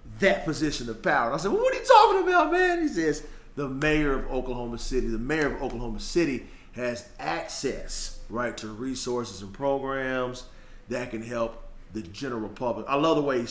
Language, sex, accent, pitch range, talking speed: English, male, American, 115-165 Hz, 195 wpm